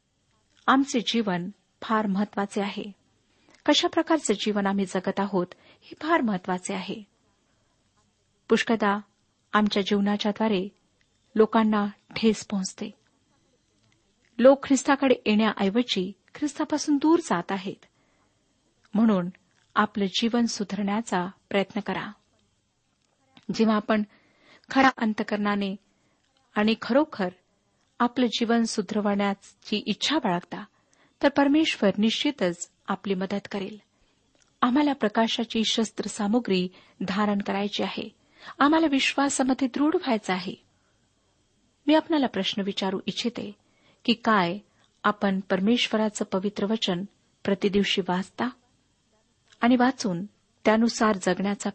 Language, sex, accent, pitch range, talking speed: Marathi, female, native, 195-235 Hz, 90 wpm